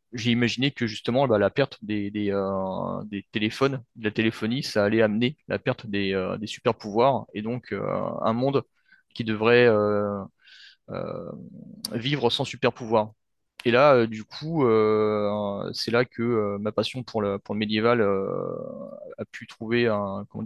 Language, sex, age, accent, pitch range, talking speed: French, male, 20-39, French, 105-125 Hz, 175 wpm